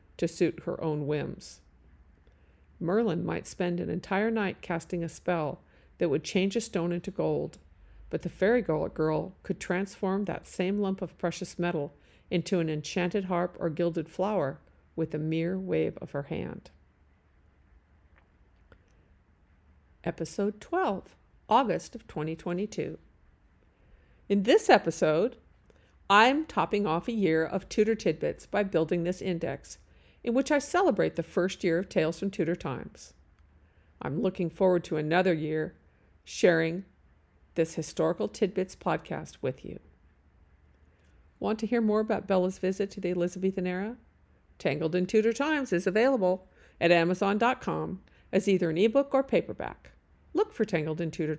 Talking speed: 140 wpm